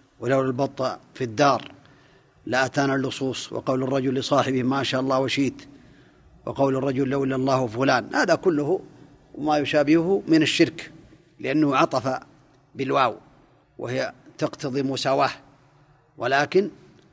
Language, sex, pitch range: Arabic, male, 135-160 Hz